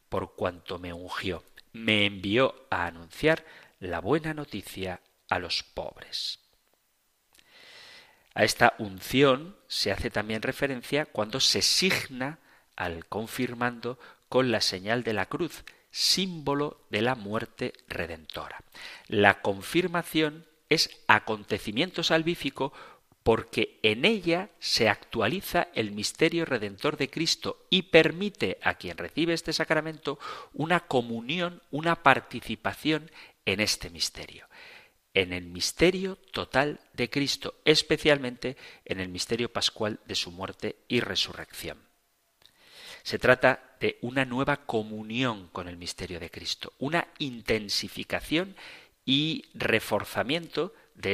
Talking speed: 115 wpm